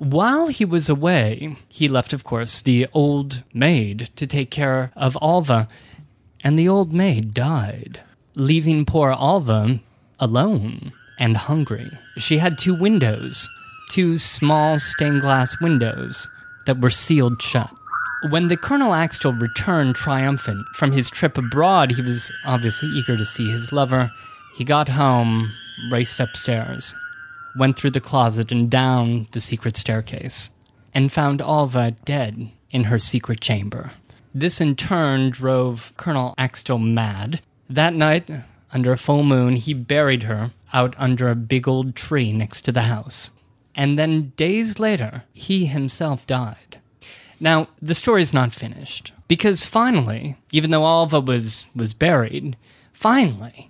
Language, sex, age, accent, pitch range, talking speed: English, male, 20-39, American, 120-155 Hz, 140 wpm